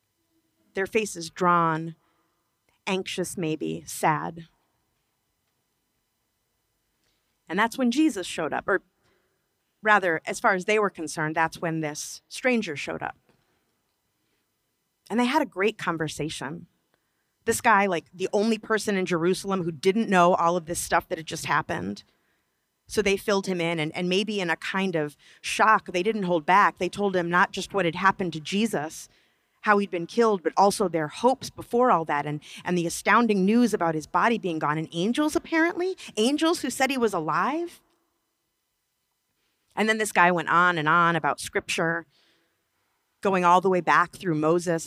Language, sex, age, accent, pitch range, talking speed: English, female, 30-49, American, 165-210 Hz, 165 wpm